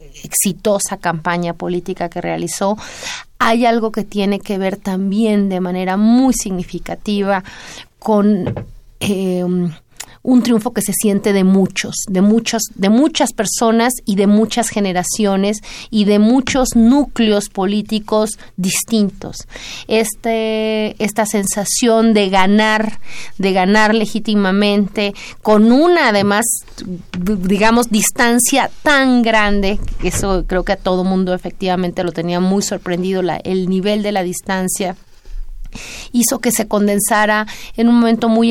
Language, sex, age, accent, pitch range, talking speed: Spanish, female, 30-49, Mexican, 180-220 Hz, 120 wpm